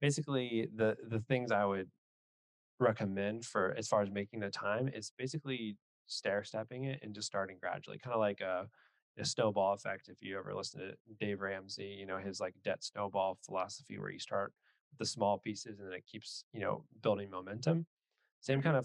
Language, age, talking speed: English, 20-39, 195 wpm